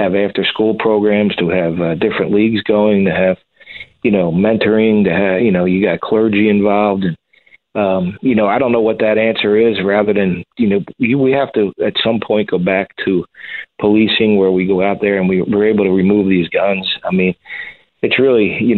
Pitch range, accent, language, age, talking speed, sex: 95-110 Hz, American, English, 40-59, 210 wpm, male